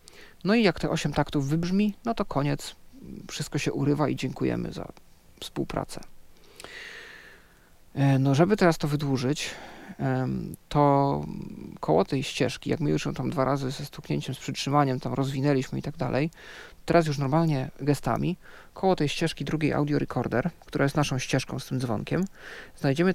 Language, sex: Polish, male